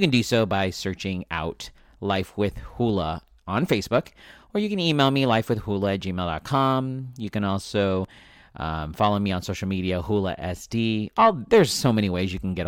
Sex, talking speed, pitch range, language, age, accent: male, 190 wpm, 85-110 Hz, English, 40-59, American